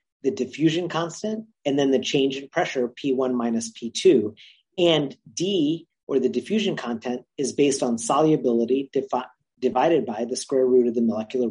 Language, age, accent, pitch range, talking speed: English, 40-59, American, 120-160 Hz, 155 wpm